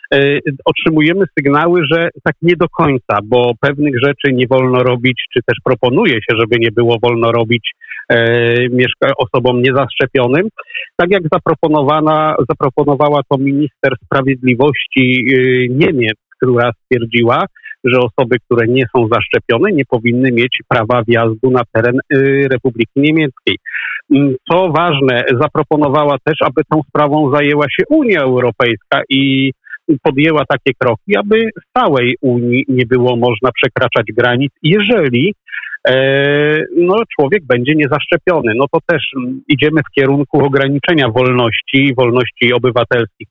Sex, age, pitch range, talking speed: male, 50-69, 125-155 Hz, 130 wpm